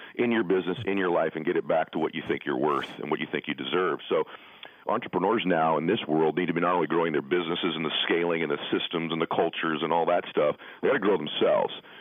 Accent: American